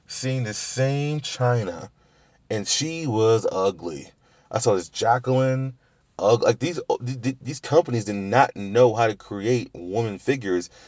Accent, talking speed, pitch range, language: American, 140 wpm, 95-125 Hz, English